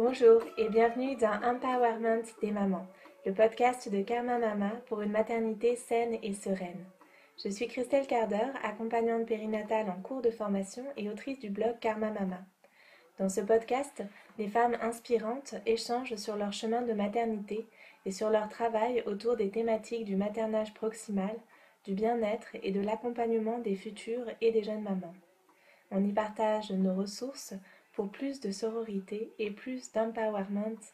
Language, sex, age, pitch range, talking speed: French, female, 20-39, 205-230 Hz, 155 wpm